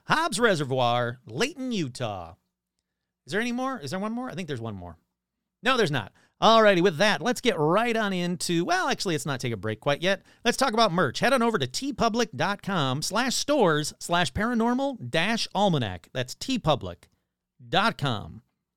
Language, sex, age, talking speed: English, male, 40-59, 175 wpm